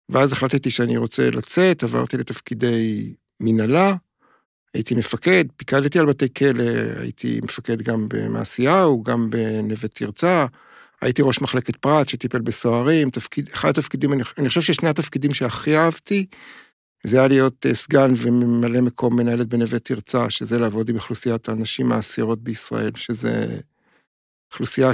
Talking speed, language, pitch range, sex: 130 wpm, Hebrew, 115-140 Hz, male